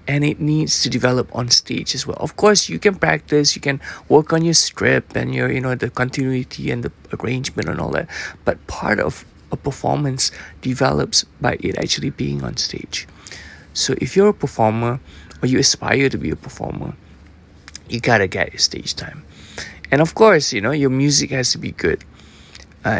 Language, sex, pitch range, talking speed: English, male, 105-145 Hz, 195 wpm